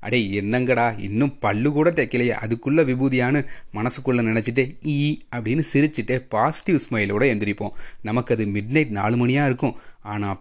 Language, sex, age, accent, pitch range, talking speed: Tamil, male, 30-49, native, 110-140 Hz, 140 wpm